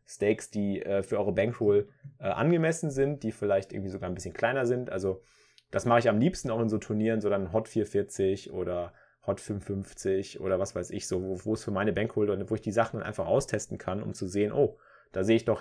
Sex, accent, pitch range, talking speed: male, German, 100-120 Hz, 230 wpm